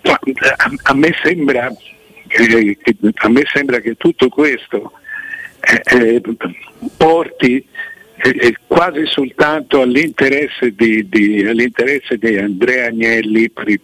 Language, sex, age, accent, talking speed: Italian, male, 50-69, native, 90 wpm